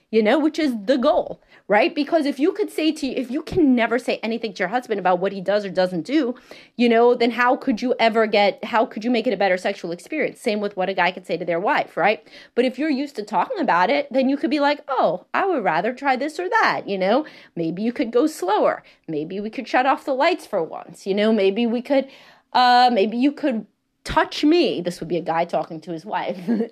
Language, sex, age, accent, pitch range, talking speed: English, female, 30-49, American, 190-270 Hz, 255 wpm